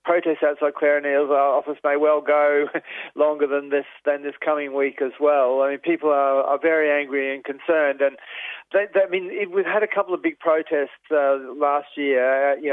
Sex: male